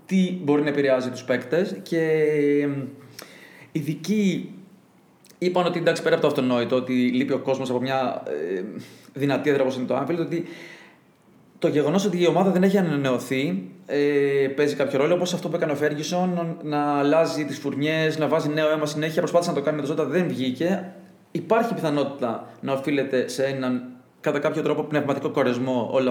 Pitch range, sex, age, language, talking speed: 140-185 Hz, male, 20-39, Greek, 170 wpm